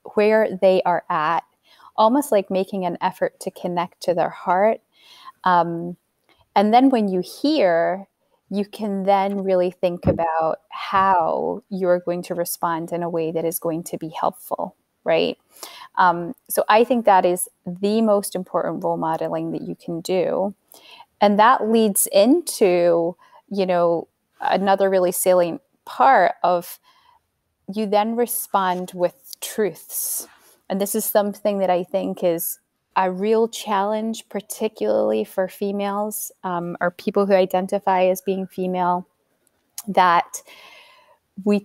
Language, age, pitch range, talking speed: English, 30-49, 180-210 Hz, 140 wpm